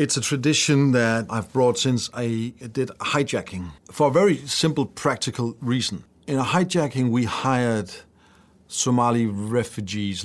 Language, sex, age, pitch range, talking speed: English, male, 40-59, 105-135 Hz, 135 wpm